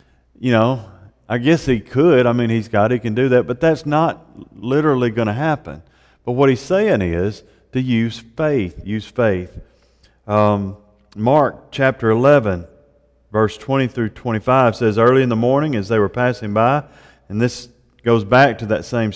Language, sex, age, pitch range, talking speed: English, male, 40-59, 105-150 Hz, 175 wpm